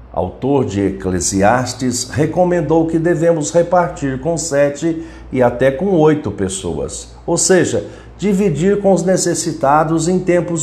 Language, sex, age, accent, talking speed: Portuguese, male, 50-69, Brazilian, 125 wpm